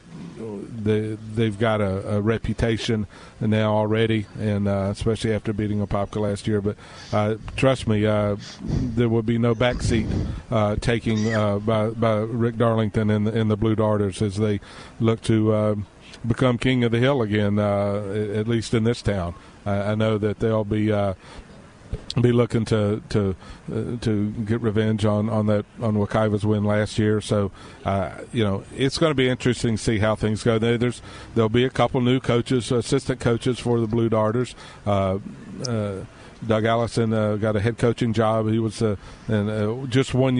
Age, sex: 50-69, male